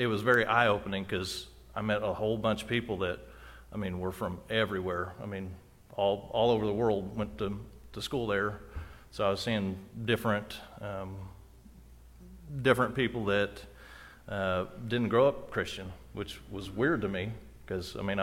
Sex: male